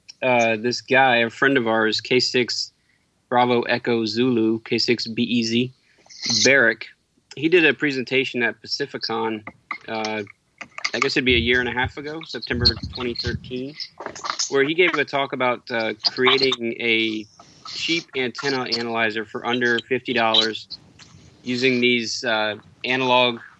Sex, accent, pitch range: male, American, 115-130 Hz